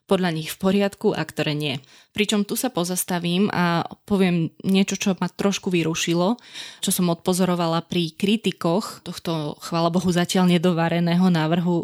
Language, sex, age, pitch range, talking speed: Slovak, female, 20-39, 165-195 Hz, 145 wpm